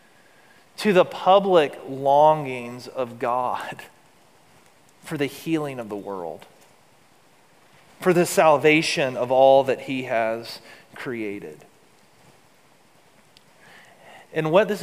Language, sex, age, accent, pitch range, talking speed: English, male, 30-49, American, 125-155 Hz, 95 wpm